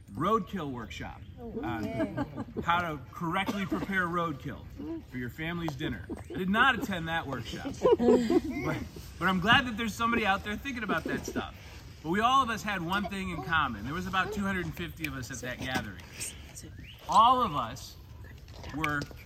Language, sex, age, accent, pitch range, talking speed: English, male, 30-49, American, 125-185 Hz, 165 wpm